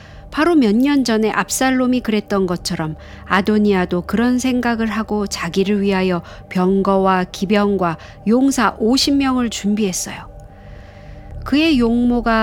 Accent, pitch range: native, 195-275 Hz